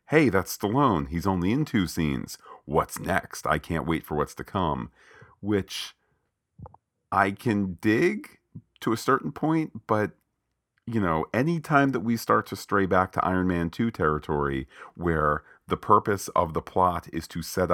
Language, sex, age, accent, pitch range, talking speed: English, male, 40-59, American, 75-95 Hz, 170 wpm